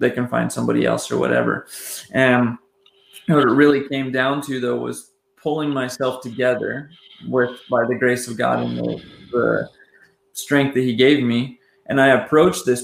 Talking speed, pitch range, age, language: 175 wpm, 120-135 Hz, 20-39, English